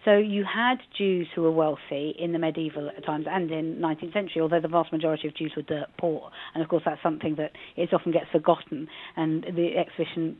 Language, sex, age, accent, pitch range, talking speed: English, female, 40-59, British, 170-210 Hz, 220 wpm